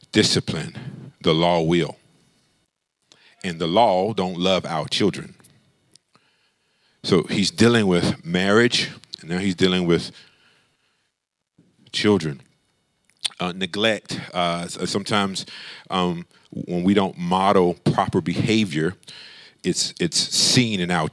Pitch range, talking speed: 95-150 Hz, 110 wpm